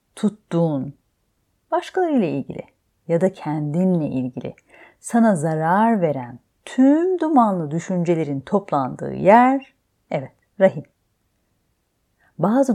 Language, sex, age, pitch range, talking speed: Turkish, female, 40-59, 135-220 Hz, 85 wpm